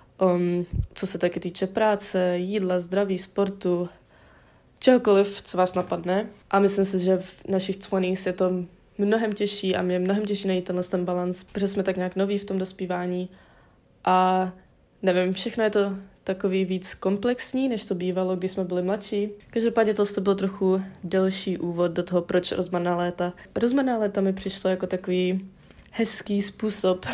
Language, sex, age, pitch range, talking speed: Czech, female, 20-39, 180-205 Hz, 165 wpm